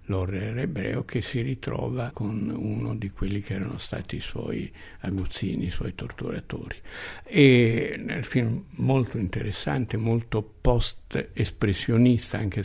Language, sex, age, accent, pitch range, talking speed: Italian, male, 60-79, native, 100-125 Hz, 125 wpm